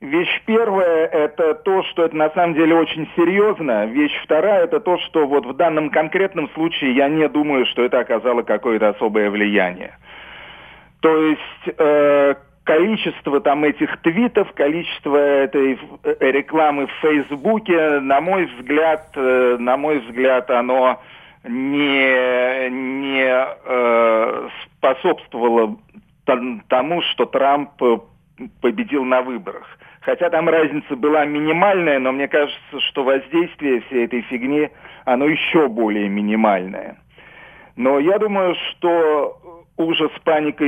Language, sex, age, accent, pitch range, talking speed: Russian, male, 40-59, native, 130-160 Hz, 120 wpm